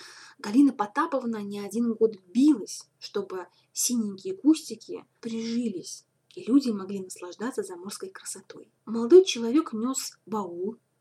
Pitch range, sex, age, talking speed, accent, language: 215-295 Hz, female, 20-39, 110 wpm, native, Russian